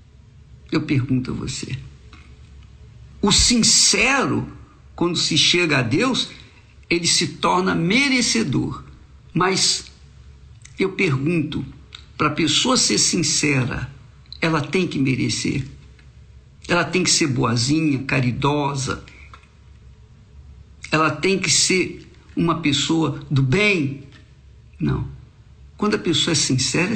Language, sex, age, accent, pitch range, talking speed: Portuguese, male, 60-79, Brazilian, 130-180 Hz, 105 wpm